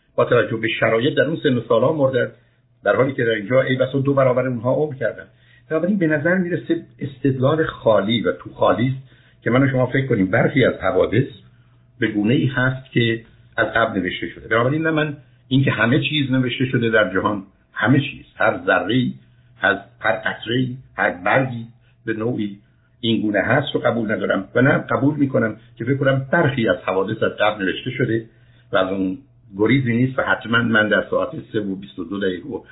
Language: Persian